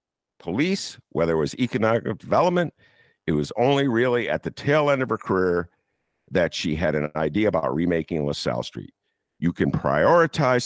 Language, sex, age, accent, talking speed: English, male, 50-69, American, 165 wpm